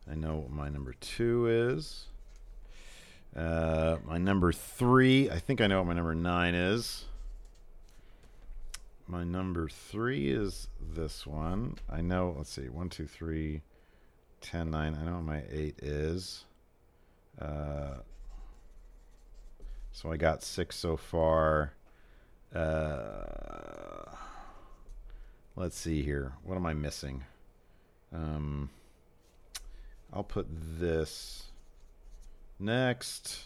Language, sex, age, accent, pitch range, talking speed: English, male, 50-69, American, 75-90 Hz, 110 wpm